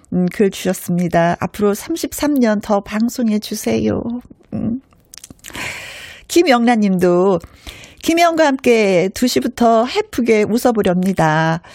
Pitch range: 175-240 Hz